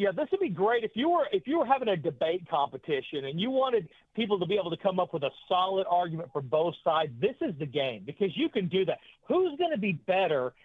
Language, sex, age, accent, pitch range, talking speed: English, male, 50-69, American, 170-225 Hz, 255 wpm